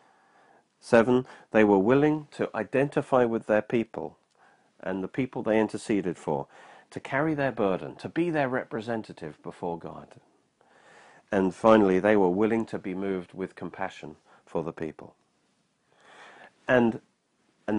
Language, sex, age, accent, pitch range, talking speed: English, male, 40-59, British, 95-135 Hz, 135 wpm